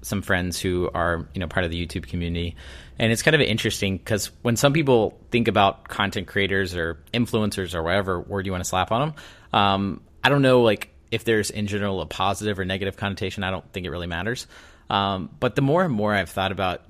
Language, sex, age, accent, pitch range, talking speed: English, male, 30-49, American, 90-110 Hz, 225 wpm